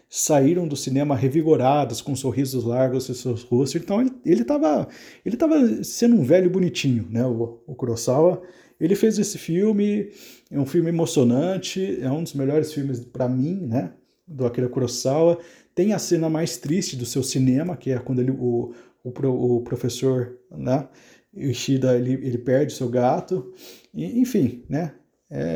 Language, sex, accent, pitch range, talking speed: Portuguese, male, Brazilian, 125-165 Hz, 165 wpm